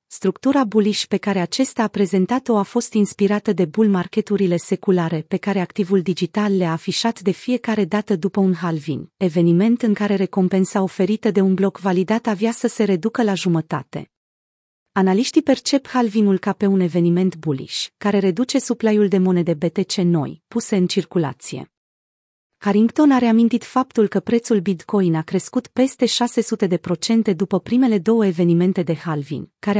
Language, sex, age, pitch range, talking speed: Romanian, female, 30-49, 180-225 Hz, 155 wpm